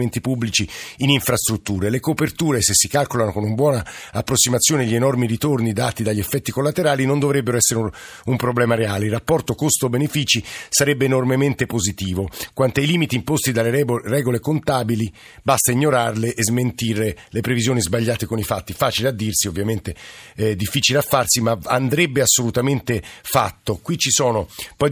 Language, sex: Italian, male